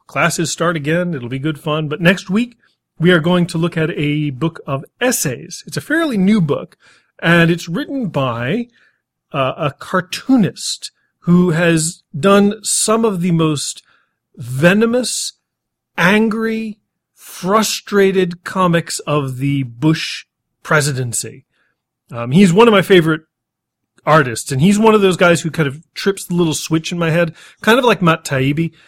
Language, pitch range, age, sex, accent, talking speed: English, 140-185 Hz, 40-59, male, American, 155 wpm